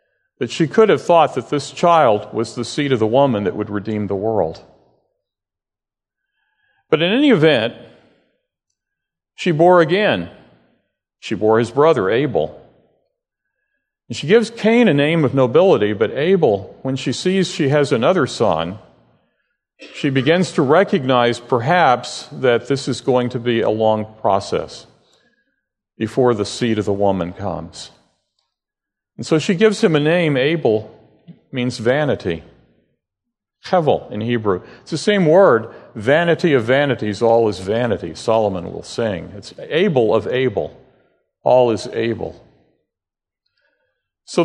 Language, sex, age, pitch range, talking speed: English, male, 50-69, 115-170 Hz, 140 wpm